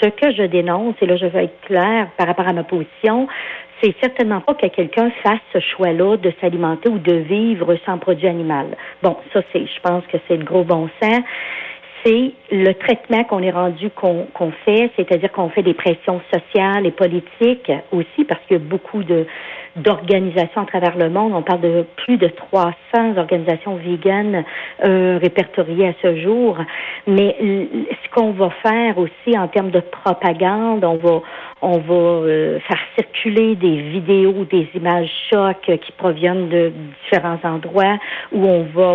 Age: 60-79